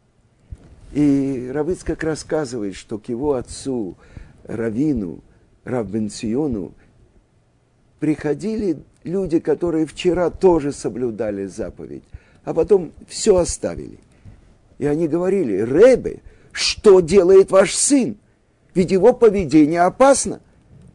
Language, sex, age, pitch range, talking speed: Russian, male, 50-69, 110-170 Hz, 90 wpm